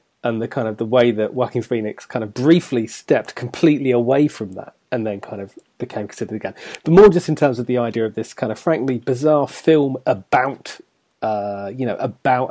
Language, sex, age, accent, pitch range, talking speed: English, male, 30-49, British, 115-140 Hz, 210 wpm